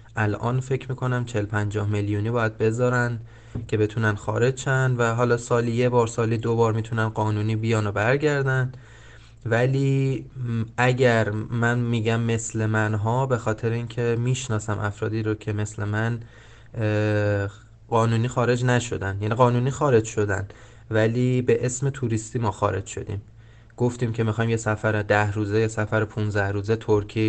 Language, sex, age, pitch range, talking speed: Persian, male, 20-39, 105-120 Hz, 145 wpm